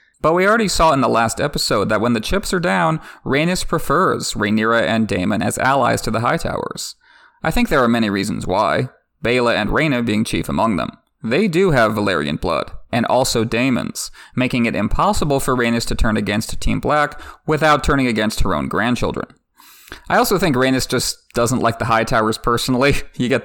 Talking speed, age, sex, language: 195 wpm, 30-49, male, English